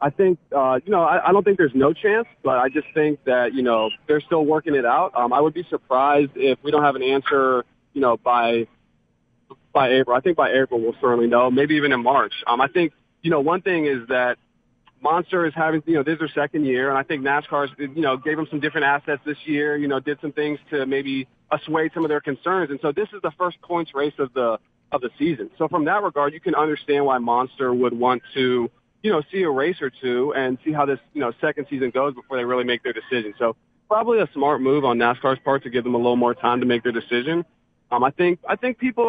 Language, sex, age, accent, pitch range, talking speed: English, male, 30-49, American, 125-155 Hz, 255 wpm